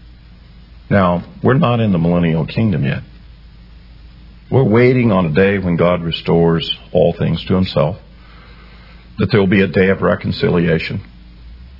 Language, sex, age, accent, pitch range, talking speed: English, male, 50-69, American, 85-130 Hz, 140 wpm